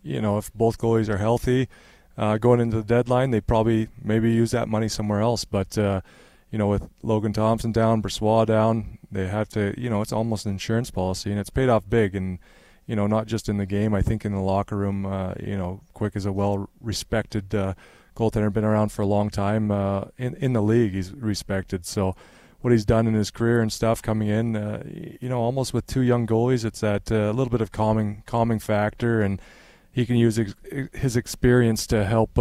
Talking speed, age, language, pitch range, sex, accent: 220 wpm, 20-39, English, 100-115 Hz, male, American